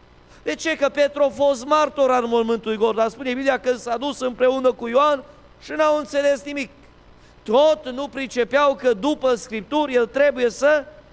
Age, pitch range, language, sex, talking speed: 30-49, 140-215 Hz, Romanian, male, 175 wpm